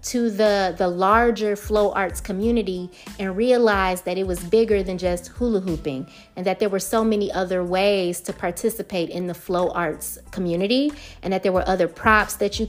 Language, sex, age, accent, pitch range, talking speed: English, female, 30-49, American, 185-230 Hz, 190 wpm